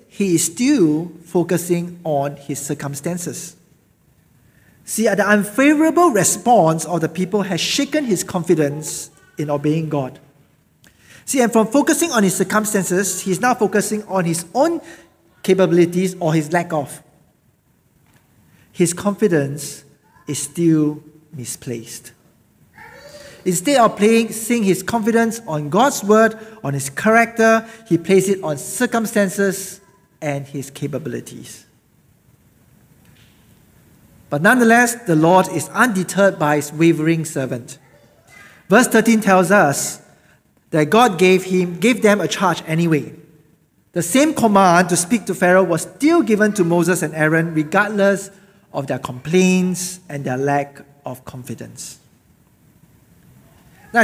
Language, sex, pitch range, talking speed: English, male, 155-215 Hz, 125 wpm